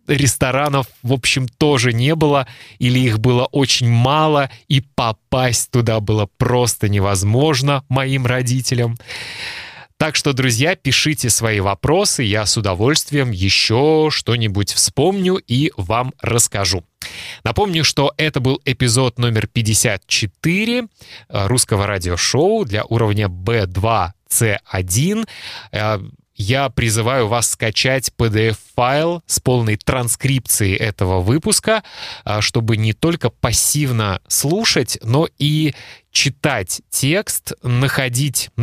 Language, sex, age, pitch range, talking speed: Russian, male, 20-39, 110-145 Hz, 105 wpm